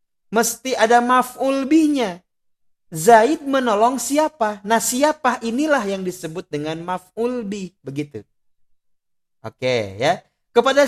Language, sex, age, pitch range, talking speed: Malay, male, 30-49, 140-230 Hz, 100 wpm